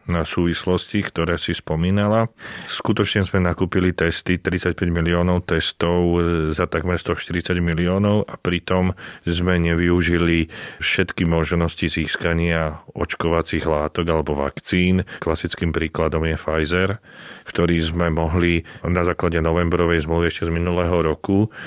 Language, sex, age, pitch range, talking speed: Slovak, male, 30-49, 80-90 Hz, 115 wpm